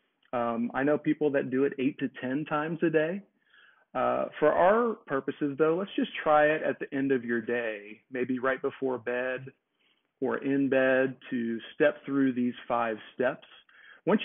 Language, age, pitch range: English, 40-59, 120-145 Hz